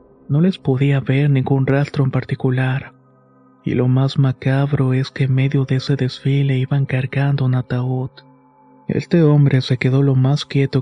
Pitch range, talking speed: 130-140 Hz, 165 wpm